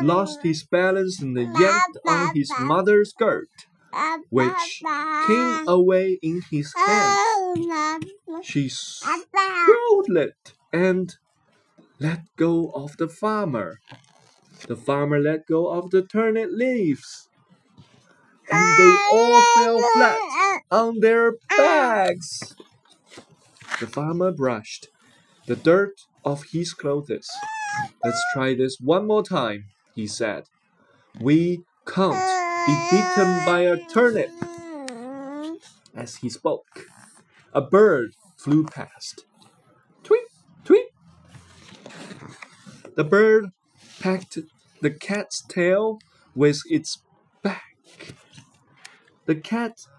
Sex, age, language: male, 30-49, Chinese